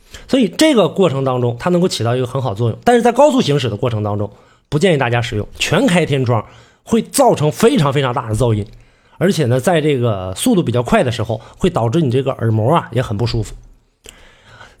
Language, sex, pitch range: Chinese, male, 120-190 Hz